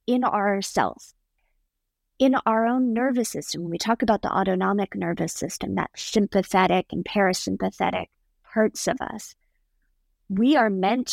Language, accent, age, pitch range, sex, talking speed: English, American, 30-49, 190-235 Hz, female, 135 wpm